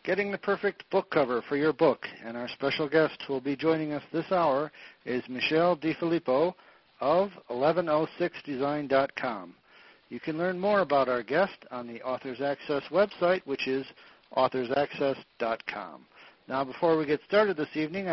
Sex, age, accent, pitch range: male, 60-79, American, 125-165 Hz